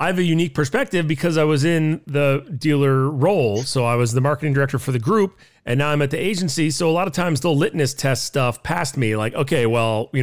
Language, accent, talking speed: English, American, 245 wpm